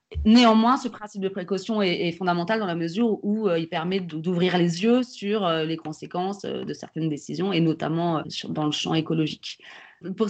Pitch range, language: 155-190 Hz, French